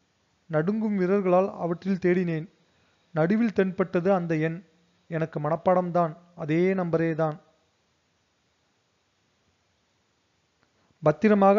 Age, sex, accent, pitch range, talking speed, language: 30-49, male, native, 165-195 Hz, 65 wpm, Tamil